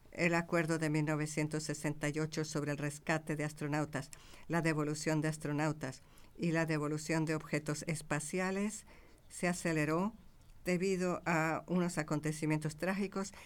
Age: 50-69